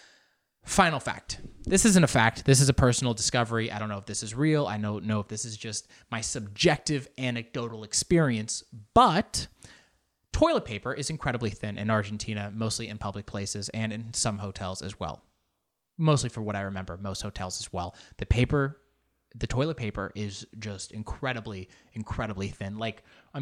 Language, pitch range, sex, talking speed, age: English, 105-145 Hz, male, 175 wpm, 20-39